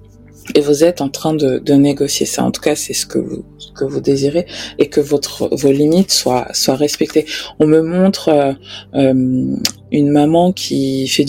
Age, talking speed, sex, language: 20-39, 195 wpm, female, English